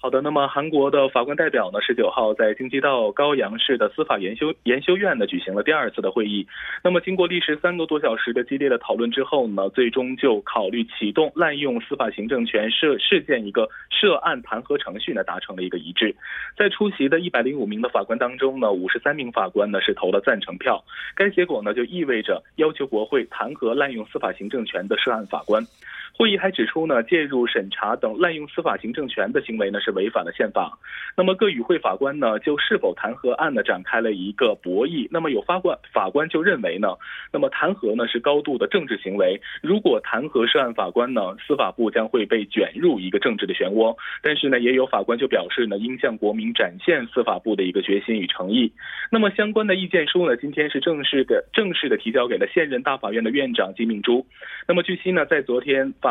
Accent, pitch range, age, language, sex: Chinese, 125-180 Hz, 20-39, Korean, male